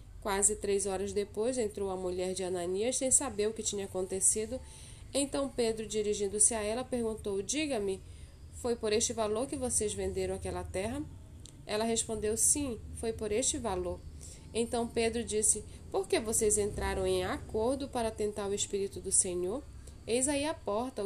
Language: Portuguese